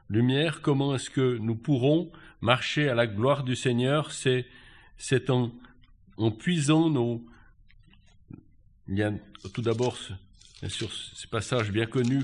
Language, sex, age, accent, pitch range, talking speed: French, male, 60-79, French, 110-145 Hz, 135 wpm